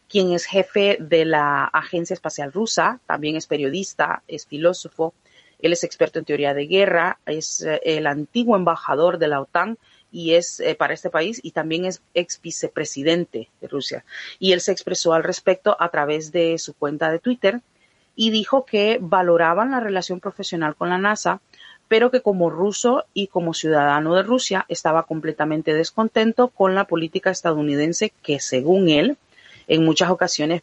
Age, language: 40-59, Spanish